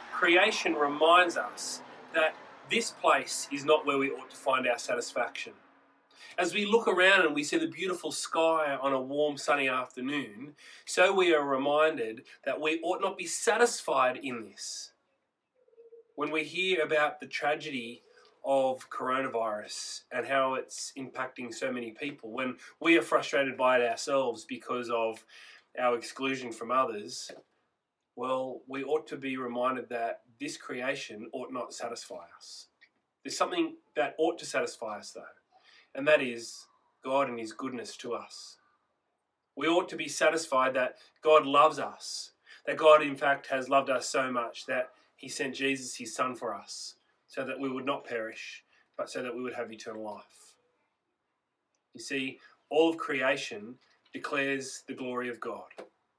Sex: male